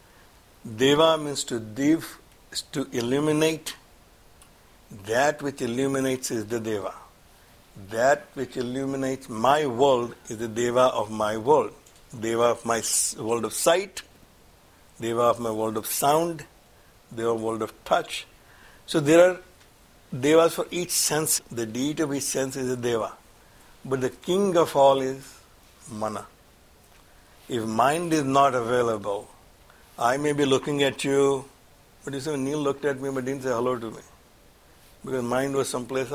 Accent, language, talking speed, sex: Indian, English, 150 wpm, male